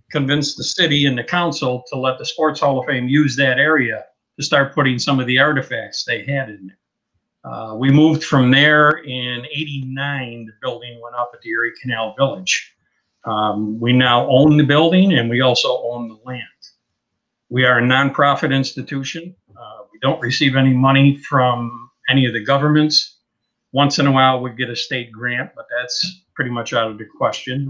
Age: 50-69